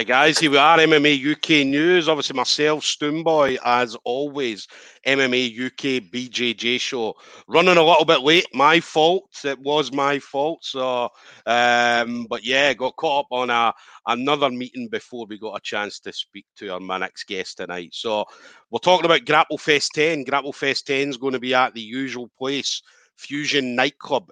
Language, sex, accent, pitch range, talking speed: English, male, British, 120-145 Hz, 170 wpm